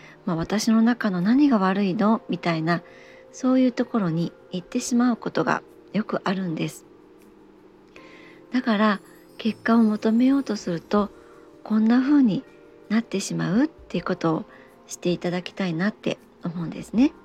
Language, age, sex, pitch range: Japanese, 40-59, male, 185-245 Hz